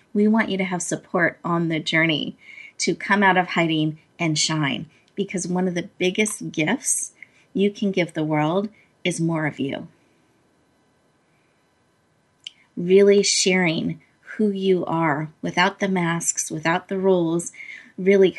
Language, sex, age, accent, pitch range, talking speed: English, female, 30-49, American, 170-200 Hz, 140 wpm